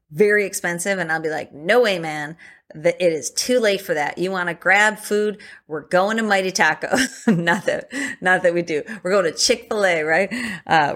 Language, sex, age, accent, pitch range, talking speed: English, female, 30-49, American, 155-205 Hz, 215 wpm